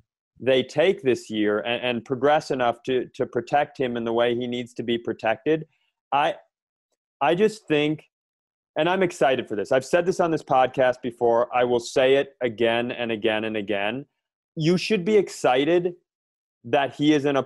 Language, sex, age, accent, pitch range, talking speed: English, male, 30-49, American, 120-155 Hz, 185 wpm